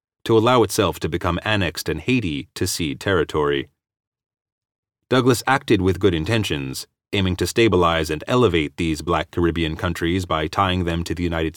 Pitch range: 85-105 Hz